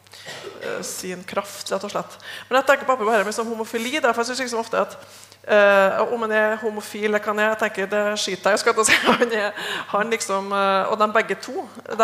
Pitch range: 190-225 Hz